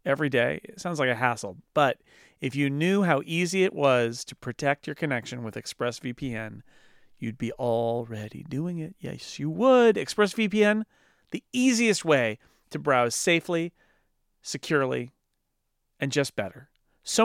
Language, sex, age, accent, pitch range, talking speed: English, male, 40-59, American, 125-165 Hz, 145 wpm